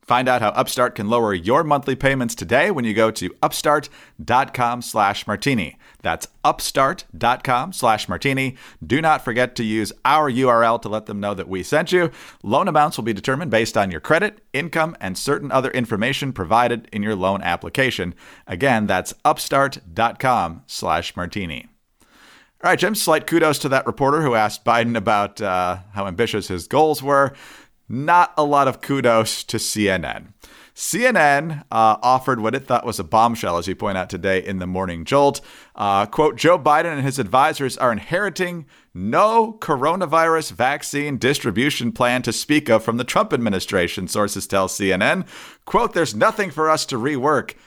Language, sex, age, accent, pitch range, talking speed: English, male, 40-59, American, 105-150 Hz, 170 wpm